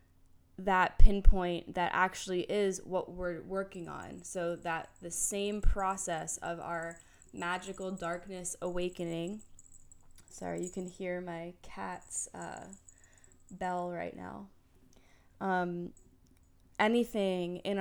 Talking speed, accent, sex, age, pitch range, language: 110 wpm, American, female, 20-39, 165-185 Hz, English